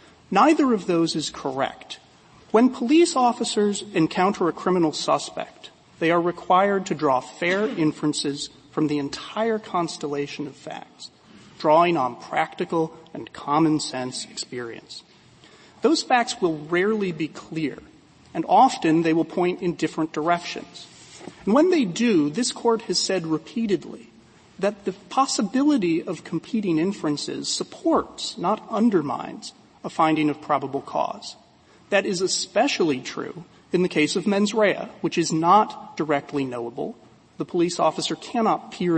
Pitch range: 145-195 Hz